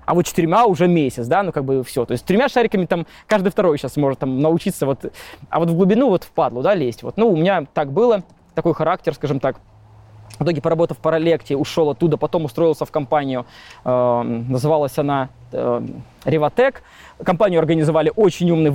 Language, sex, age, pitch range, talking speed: Russian, male, 20-39, 145-180 Hz, 190 wpm